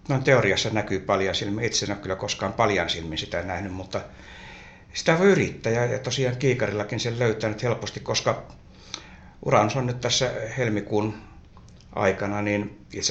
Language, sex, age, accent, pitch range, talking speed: Finnish, male, 60-79, native, 95-115 Hz, 145 wpm